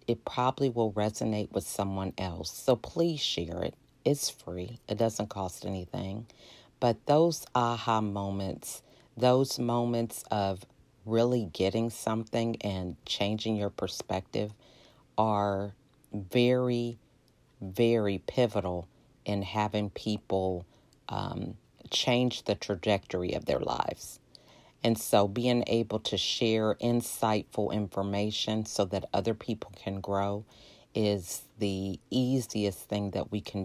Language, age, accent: English, 40-59, American